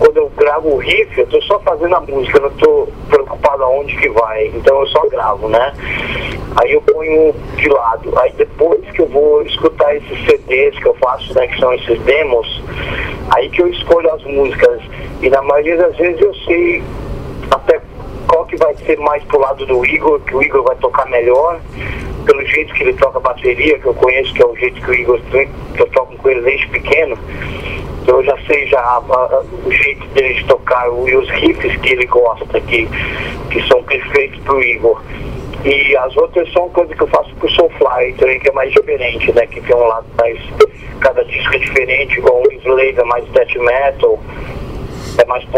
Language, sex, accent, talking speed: Portuguese, male, Brazilian, 195 wpm